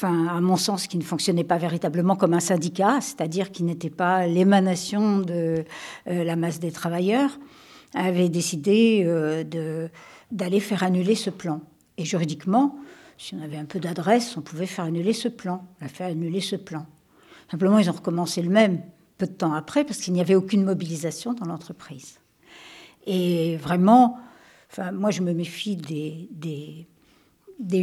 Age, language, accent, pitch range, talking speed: 60-79, French, French, 170-215 Hz, 170 wpm